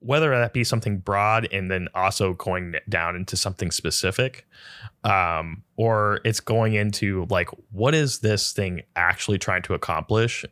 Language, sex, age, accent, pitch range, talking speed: English, male, 20-39, American, 95-120 Hz, 155 wpm